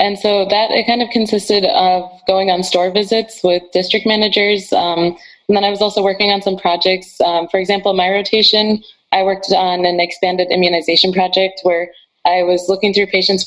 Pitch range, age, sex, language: 170-195 Hz, 20-39, female, English